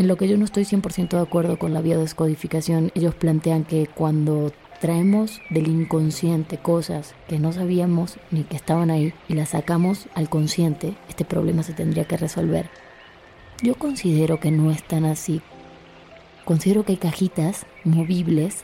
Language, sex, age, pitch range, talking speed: Spanish, female, 20-39, 160-180 Hz, 165 wpm